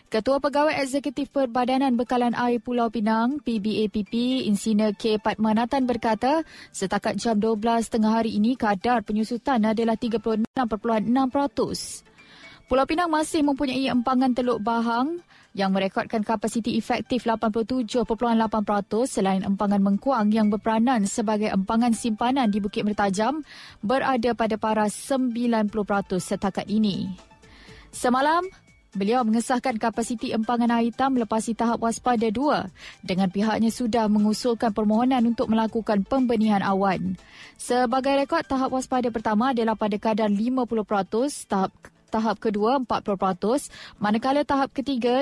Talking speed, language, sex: 115 wpm, Malay, female